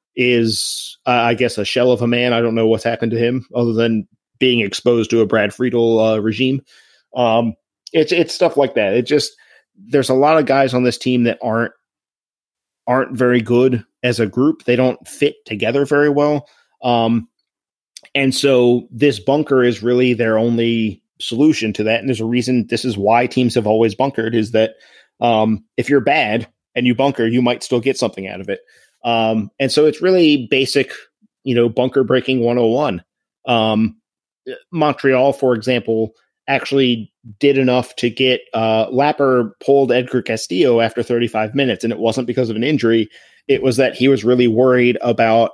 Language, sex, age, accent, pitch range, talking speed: English, male, 30-49, American, 115-130 Hz, 185 wpm